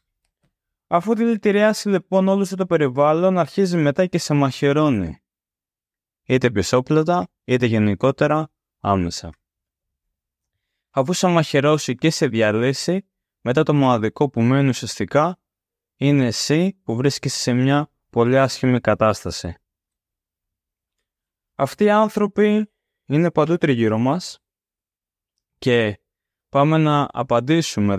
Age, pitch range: 20-39, 105-155 Hz